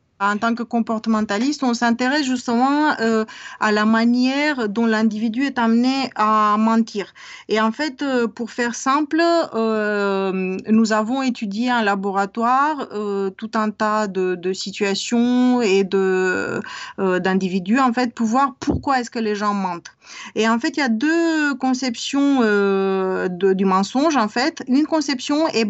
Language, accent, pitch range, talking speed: French, French, 205-265 Hz, 155 wpm